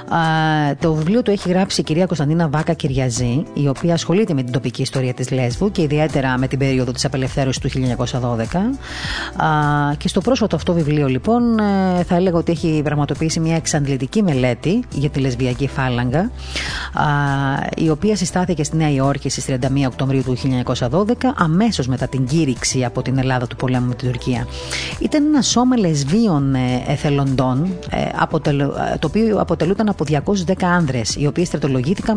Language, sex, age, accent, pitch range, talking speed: Greek, female, 30-49, native, 130-185 Hz, 155 wpm